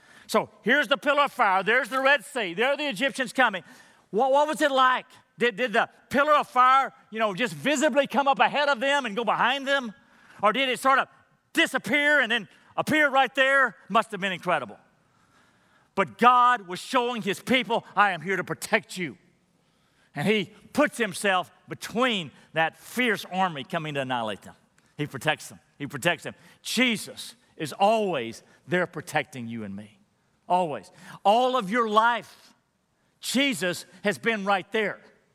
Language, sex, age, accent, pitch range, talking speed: English, male, 40-59, American, 180-250 Hz, 175 wpm